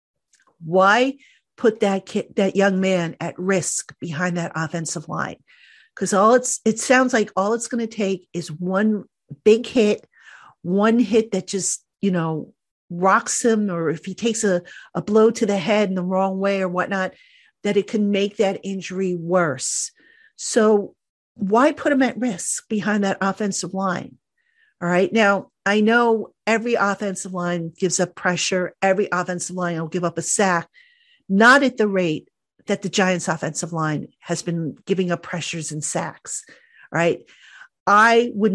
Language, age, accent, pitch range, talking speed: English, 50-69, American, 175-220 Hz, 165 wpm